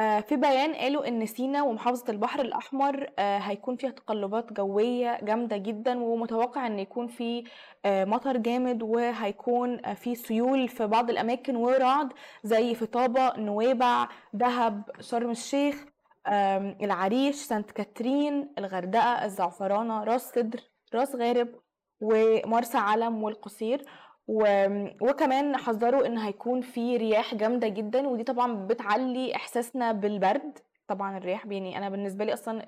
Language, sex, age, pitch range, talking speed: Arabic, female, 20-39, 210-250 Hz, 120 wpm